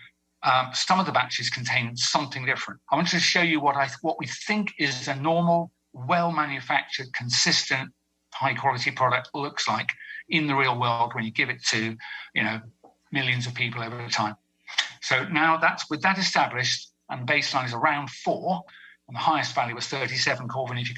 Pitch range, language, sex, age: 115-160 Hz, English, male, 50-69